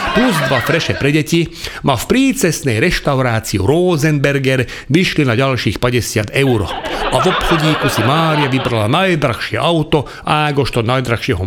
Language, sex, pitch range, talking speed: Slovak, male, 120-165 Hz, 130 wpm